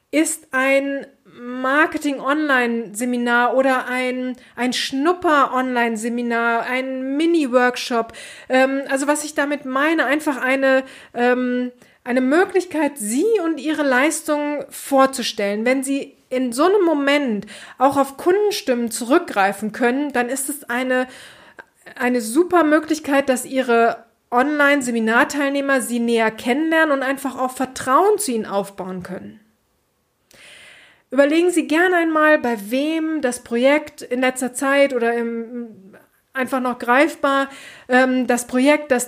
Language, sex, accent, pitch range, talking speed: German, female, German, 245-300 Hz, 115 wpm